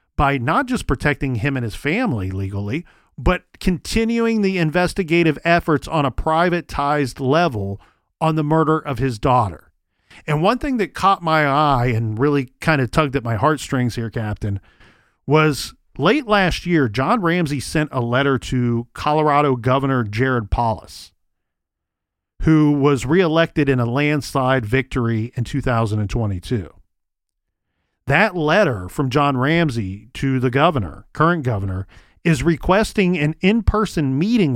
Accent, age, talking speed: American, 40-59, 135 wpm